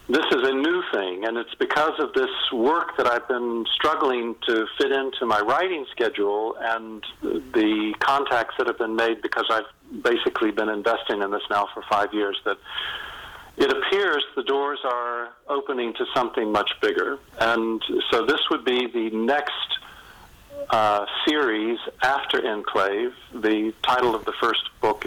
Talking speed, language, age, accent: 160 wpm, English, 50-69, American